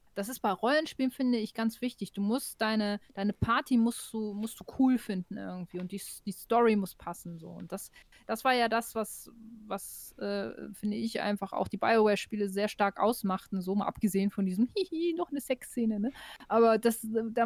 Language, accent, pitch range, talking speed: German, German, 210-250 Hz, 200 wpm